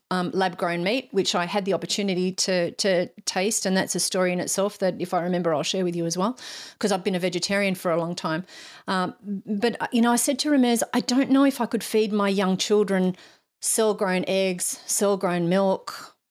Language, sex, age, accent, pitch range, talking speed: English, female, 40-59, Australian, 180-215 Hz, 225 wpm